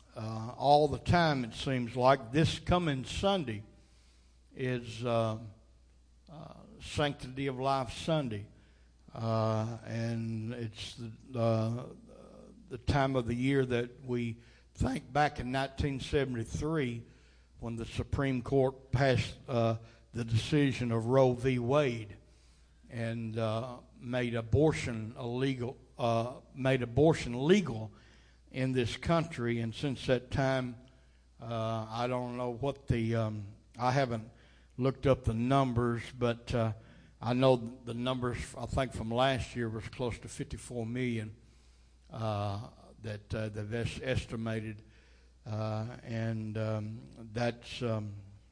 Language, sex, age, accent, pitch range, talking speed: English, male, 60-79, American, 110-130 Hz, 125 wpm